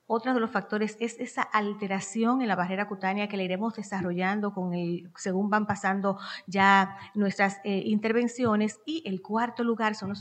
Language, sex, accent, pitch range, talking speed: Spanish, female, American, 195-230 Hz, 175 wpm